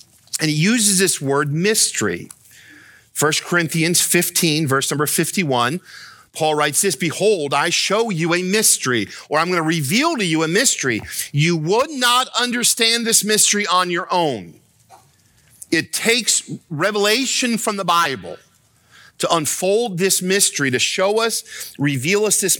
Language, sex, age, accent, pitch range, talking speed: English, male, 50-69, American, 155-215 Hz, 145 wpm